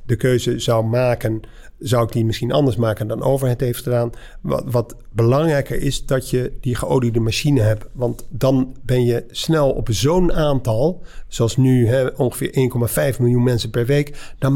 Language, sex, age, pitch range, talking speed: Dutch, male, 50-69, 120-145 Hz, 170 wpm